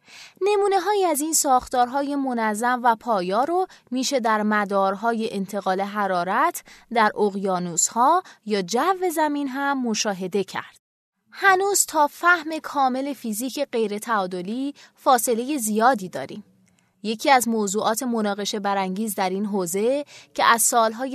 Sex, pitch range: female, 205-275 Hz